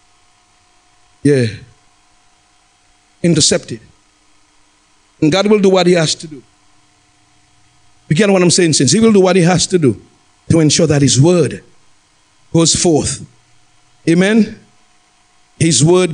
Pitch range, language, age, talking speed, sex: 125-175 Hz, English, 50-69, 130 wpm, male